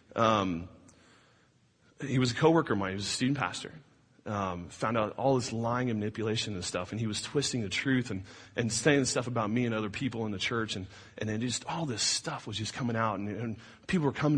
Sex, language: male, English